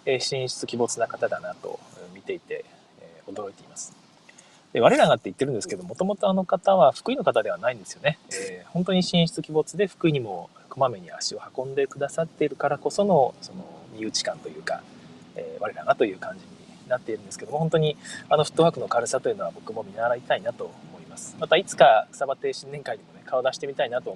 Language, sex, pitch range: Japanese, male, 150-215 Hz